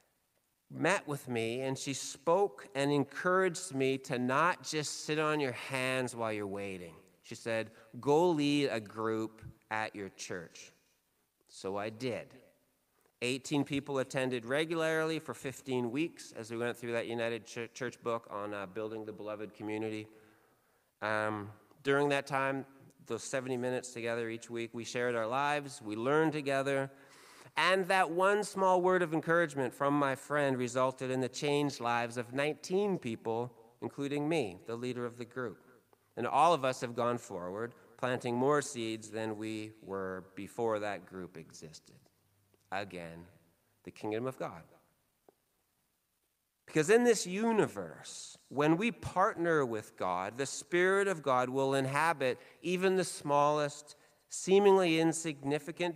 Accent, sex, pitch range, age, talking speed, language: American, male, 110-145 Hz, 40-59, 145 wpm, English